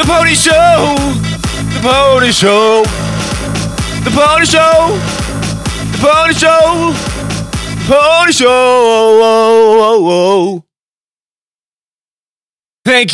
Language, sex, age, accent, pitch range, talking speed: English, male, 30-49, American, 135-215 Hz, 85 wpm